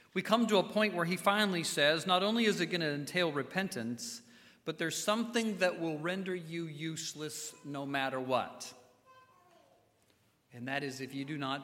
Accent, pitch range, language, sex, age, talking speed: American, 120-150 Hz, English, male, 40-59, 180 wpm